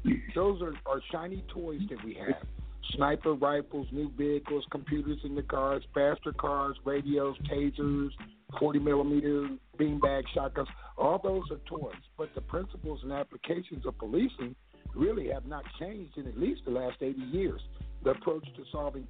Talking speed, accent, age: 155 wpm, American, 50-69